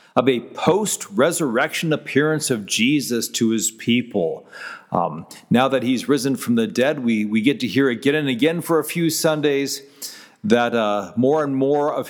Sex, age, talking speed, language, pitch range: male, 40-59, 175 wpm, English, 135-200 Hz